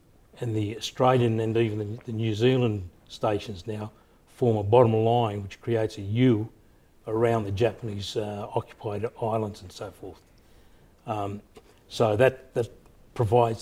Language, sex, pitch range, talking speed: English, male, 105-120 Hz, 140 wpm